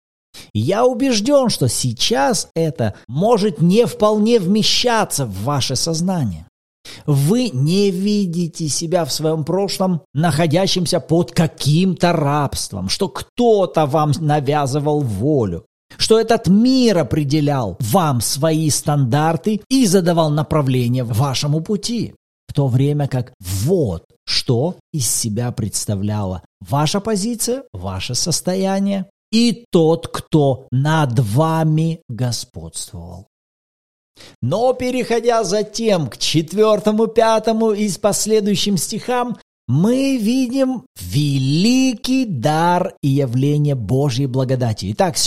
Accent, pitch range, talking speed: native, 130-200 Hz, 105 wpm